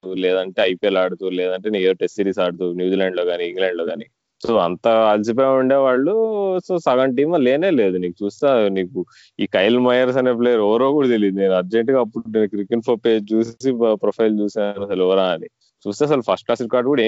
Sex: male